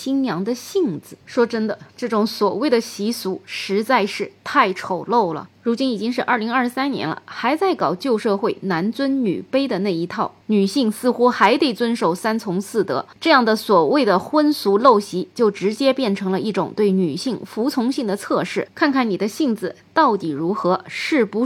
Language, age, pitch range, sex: Chinese, 20-39, 185-240 Hz, female